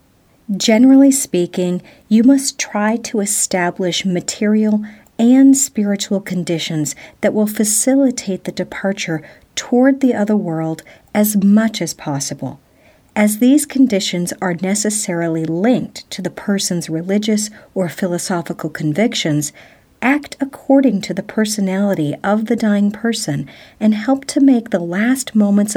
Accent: American